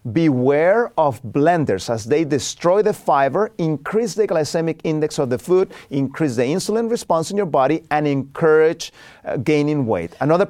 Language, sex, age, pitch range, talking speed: English, male, 40-59, 150-225 Hz, 160 wpm